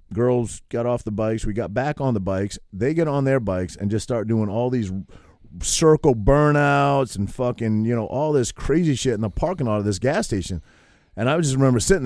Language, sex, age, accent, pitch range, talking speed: English, male, 30-49, American, 95-125 Hz, 225 wpm